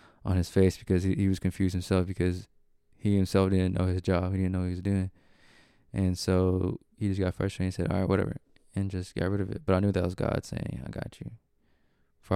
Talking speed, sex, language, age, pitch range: 250 wpm, male, English, 20-39, 90-100 Hz